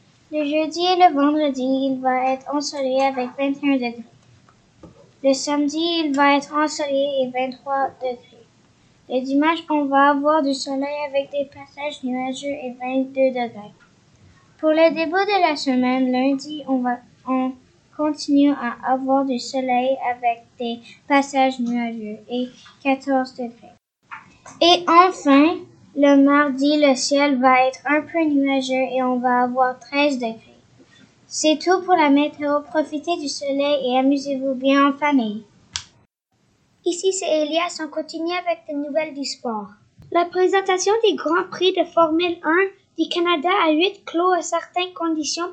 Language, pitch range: French, 260-320 Hz